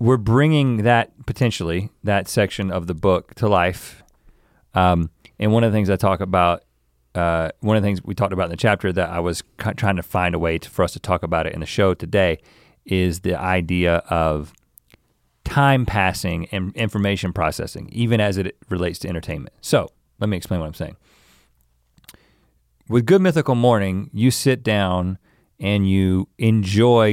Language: English